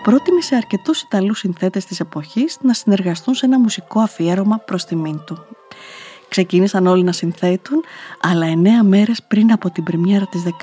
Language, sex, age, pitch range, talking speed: Greek, female, 20-39, 180-220 Hz, 150 wpm